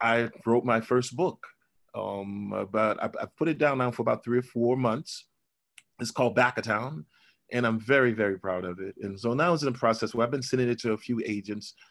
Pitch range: 105-125 Hz